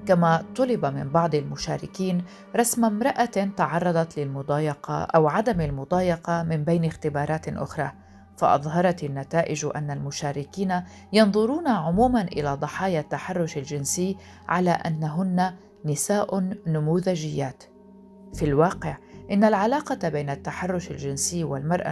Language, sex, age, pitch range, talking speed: Arabic, female, 50-69, 150-200 Hz, 105 wpm